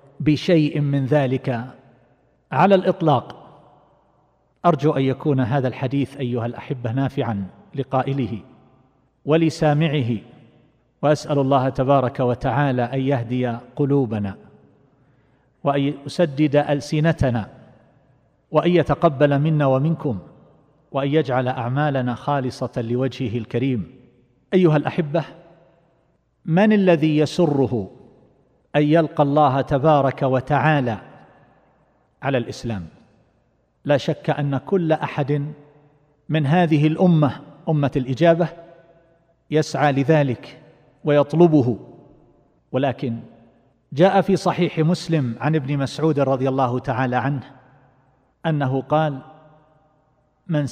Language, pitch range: Arabic, 130-155 Hz